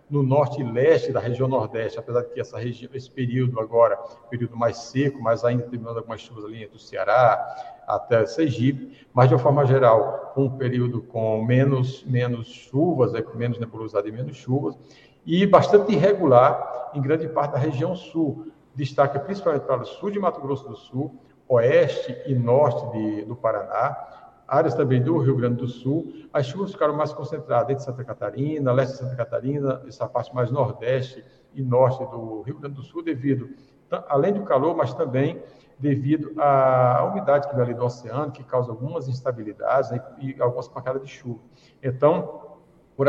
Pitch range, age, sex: 120-150 Hz, 60-79, male